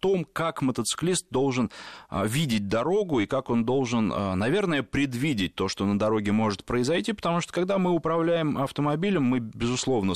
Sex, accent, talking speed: male, native, 165 wpm